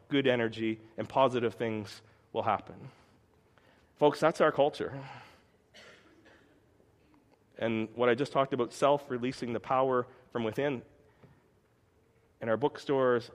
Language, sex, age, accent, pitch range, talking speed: English, male, 30-49, American, 110-135 Hz, 110 wpm